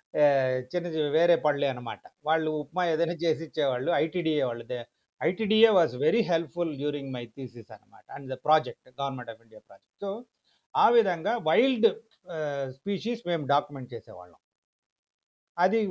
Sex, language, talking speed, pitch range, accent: male, Telugu, 140 wpm, 150-220 Hz, native